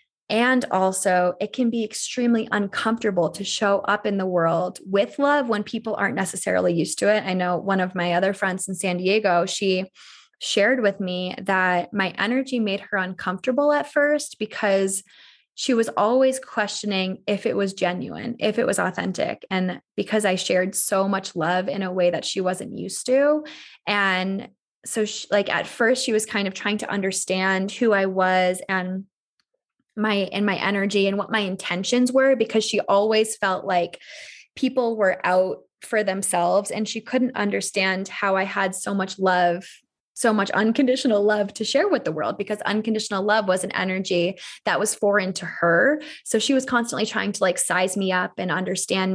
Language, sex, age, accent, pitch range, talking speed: English, female, 20-39, American, 185-220 Hz, 180 wpm